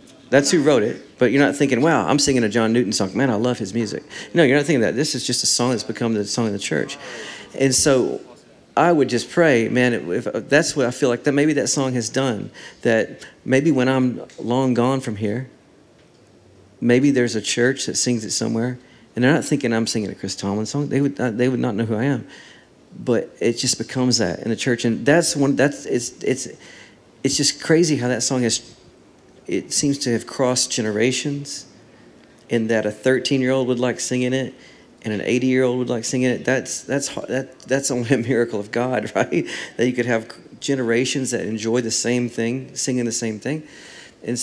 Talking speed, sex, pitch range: 220 wpm, male, 115-130 Hz